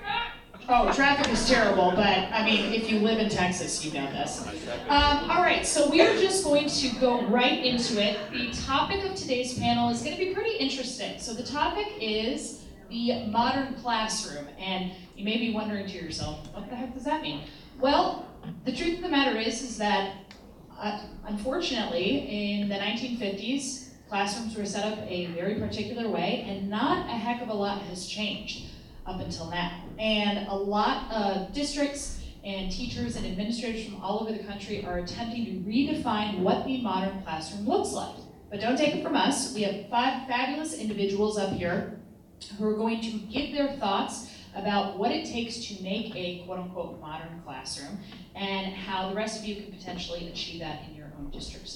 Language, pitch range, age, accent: English, 200-255 Hz, 30-49, American